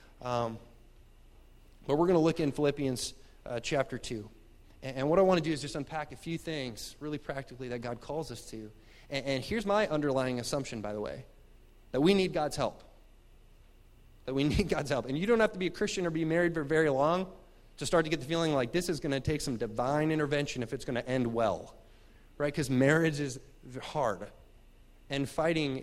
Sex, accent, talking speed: male, American, 215 wpm